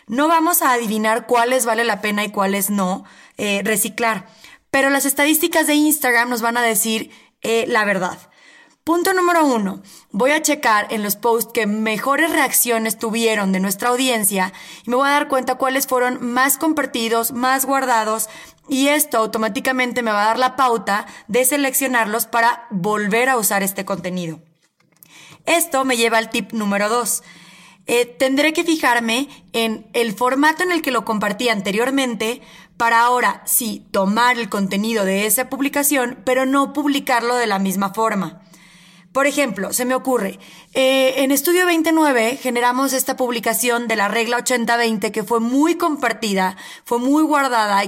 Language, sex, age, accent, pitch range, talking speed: Spanish, female, 20-39, Mexican, 215-270 Hz, 160 wpm